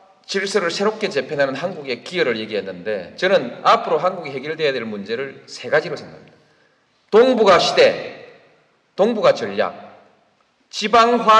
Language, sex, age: Korean, male, 40-59